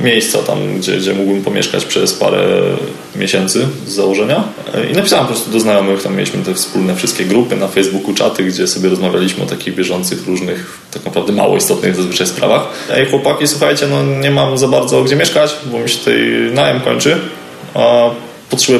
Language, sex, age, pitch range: Polish, male, 20-39, 95-130 Hz